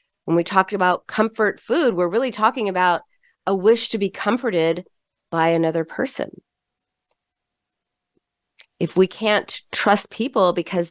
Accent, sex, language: American, female, English